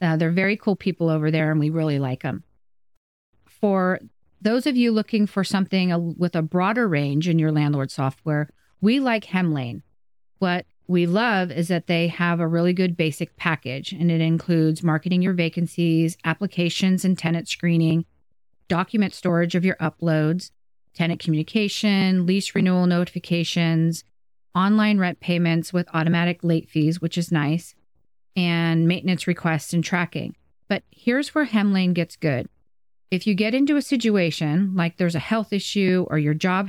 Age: 40-59